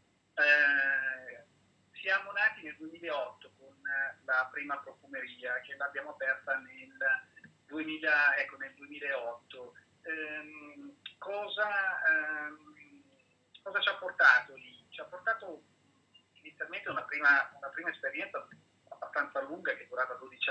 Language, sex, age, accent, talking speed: Italian, male, 40-59, native, 115 wpm